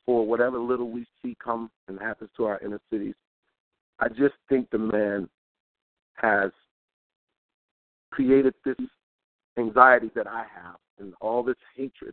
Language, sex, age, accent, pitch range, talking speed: English, male, 50-69, American, 110-145 Hz, 140 wpm